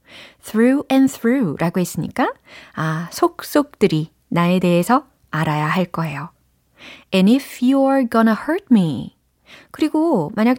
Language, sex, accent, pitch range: Korean, female, native, 170-240 Hz